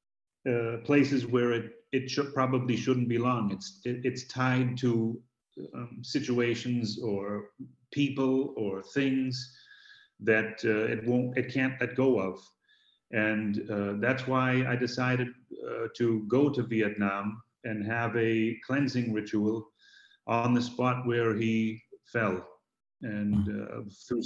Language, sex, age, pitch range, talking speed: English, male, 40-59, 110-130 Hz, 125 wpm